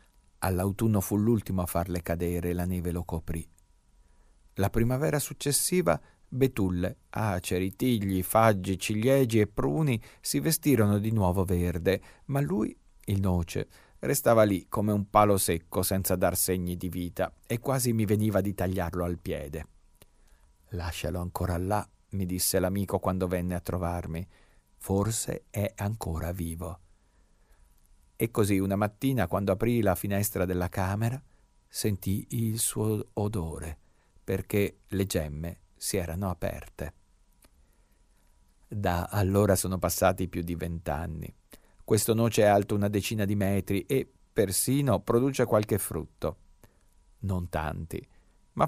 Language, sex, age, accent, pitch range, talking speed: Italian, male, 50-69, native, 90-105 Hz, 130 wpm